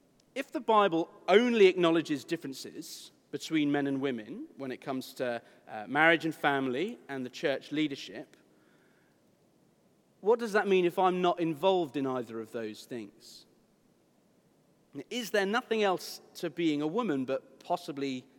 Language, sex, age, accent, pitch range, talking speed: English, male, 40-59, British, 140-195 Hz, 145 wpm